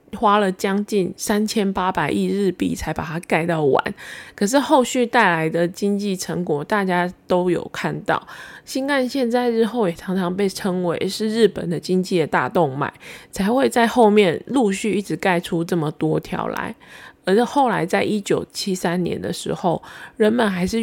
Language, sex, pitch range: Chinese, female, 180-220 Hz